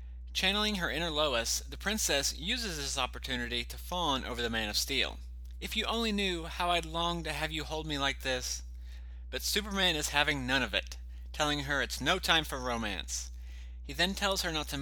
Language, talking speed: English, 205 wpm